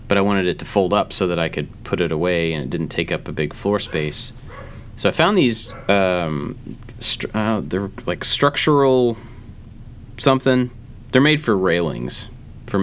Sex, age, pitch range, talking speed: male, 30-49, 80-115 Hz, 180 wpm